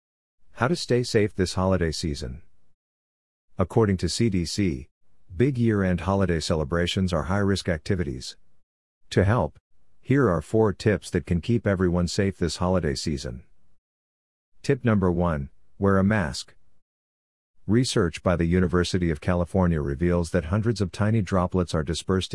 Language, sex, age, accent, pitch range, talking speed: English, male, 50-69, American, 85-100 Hz, 135 wpm